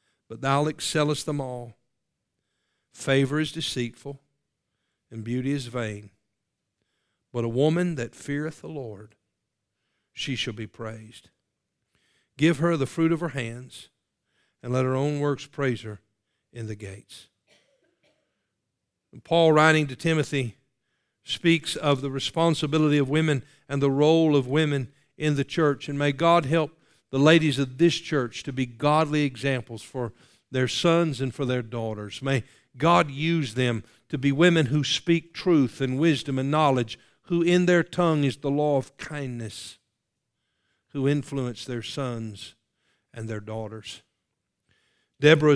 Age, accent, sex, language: 50-69, American, male, English